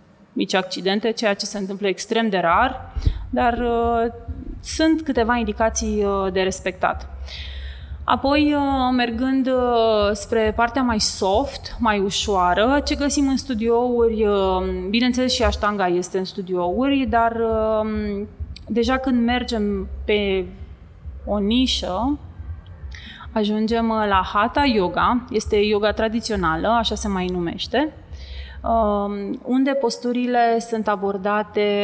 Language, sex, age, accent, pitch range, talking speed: Romanian, female, 20-39, native, 190-235 Hz, 115 wpm